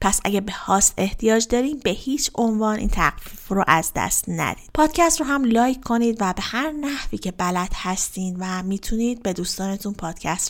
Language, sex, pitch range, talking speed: Persian, female, 185-235 Hz, 185 wpm